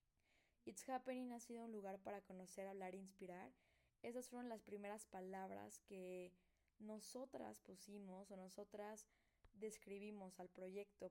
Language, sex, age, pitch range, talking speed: Spanish, female, 20-39, 190-215 Hz, 130 wpm